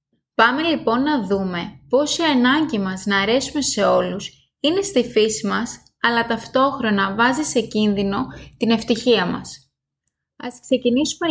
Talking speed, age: 140 wpm, 20-39